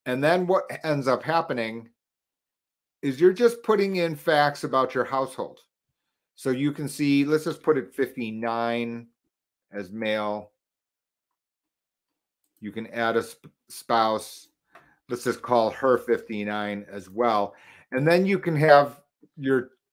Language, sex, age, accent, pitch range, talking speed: English, male, 40-59, American, 120-145 Hz, 135 wpm